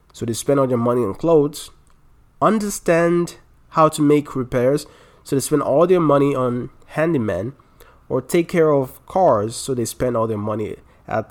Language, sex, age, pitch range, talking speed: English, male, 20-39, 115-145 Hz, 175 wpm